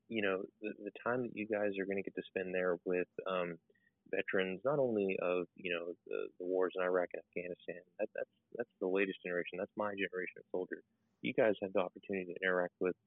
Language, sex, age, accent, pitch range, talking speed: English, male, 20-39, American, 90-100 Hz, 225 wpm